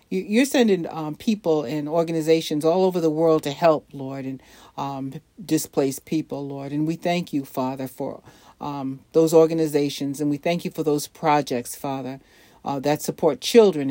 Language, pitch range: English, 140-170 Hz